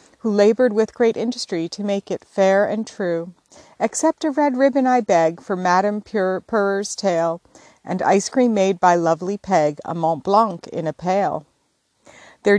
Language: English